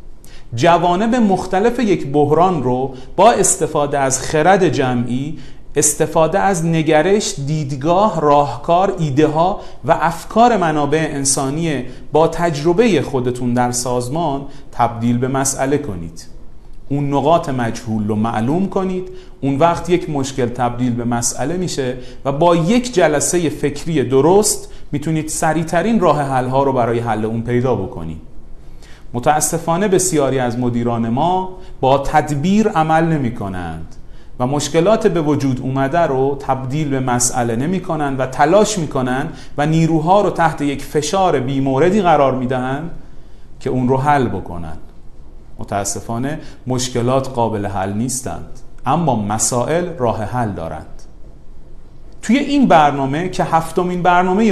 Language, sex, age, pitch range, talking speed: Persian, male, 40-59, 125-170 Hz, 130 wpm